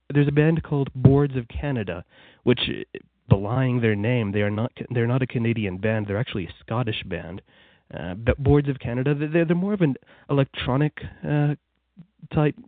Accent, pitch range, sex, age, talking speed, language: American, 110-140 Hz, male, 20-39, 175 wpm, English